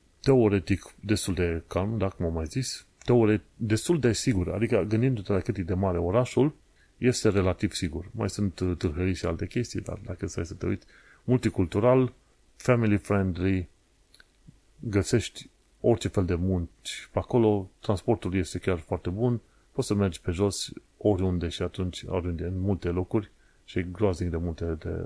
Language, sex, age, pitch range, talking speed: Romanian, male, 30-49, 90-105 Hz, 160 wpm